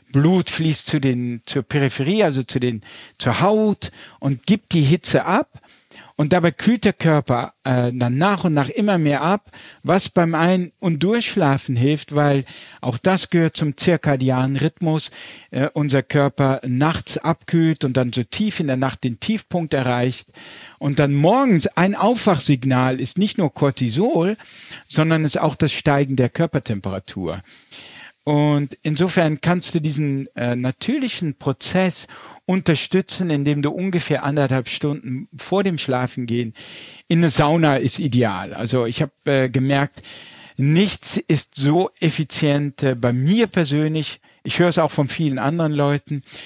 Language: German